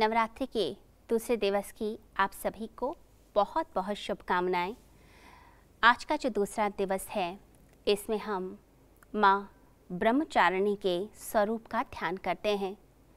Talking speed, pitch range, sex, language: 125 wpm, 190-235 Hz, female, Hindi